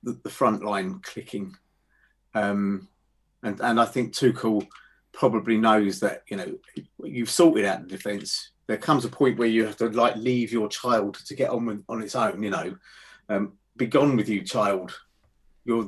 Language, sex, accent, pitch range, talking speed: English, male, British, 115-150 Hz, 180 wpm